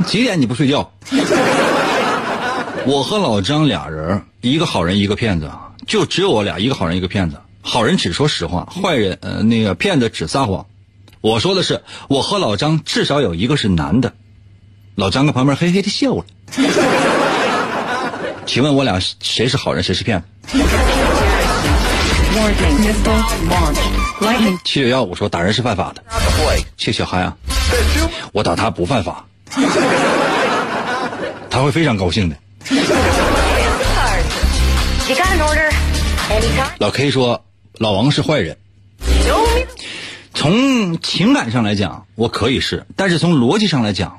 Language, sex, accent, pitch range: Chinese, male, native, 95-140 Hz